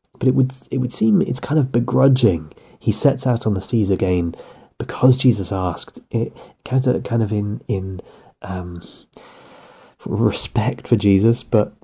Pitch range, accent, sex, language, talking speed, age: 95-120 Hz, British, male, English, 155 wpm, 20-39